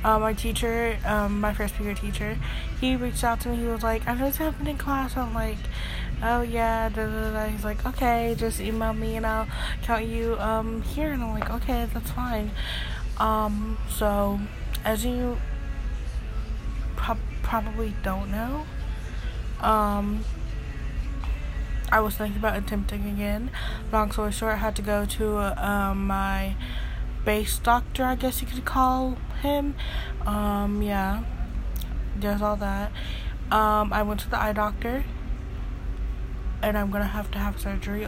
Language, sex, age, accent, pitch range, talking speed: English, female, 20-39, American, 200-230 Hz, 155 wpm